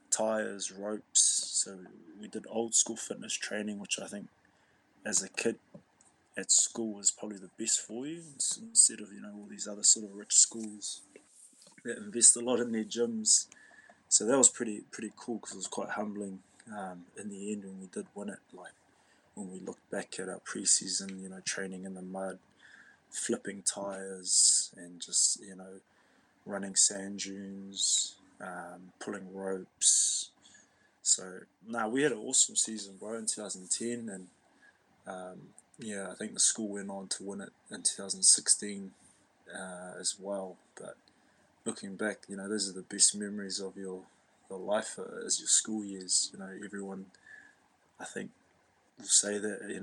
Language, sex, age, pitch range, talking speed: English, male, 20-39, 95-105 Hz, 170 wpm